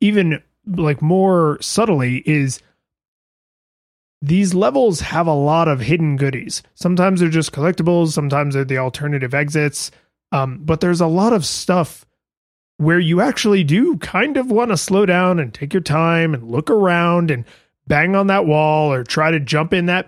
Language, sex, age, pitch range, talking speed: English, male, 30-49, 145-180 Hz, 170 wpm